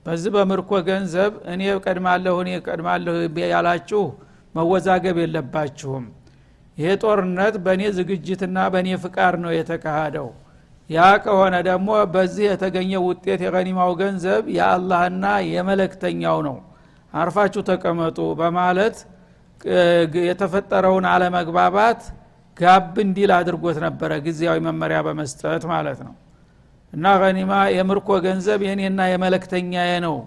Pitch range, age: 165-195 Hz, 60-79